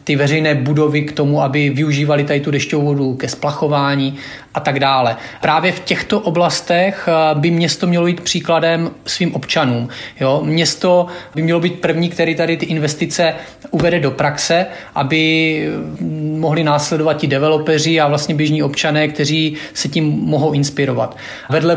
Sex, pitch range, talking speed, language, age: male, 140-160 Hz, 150 wpm, Czech, 30-49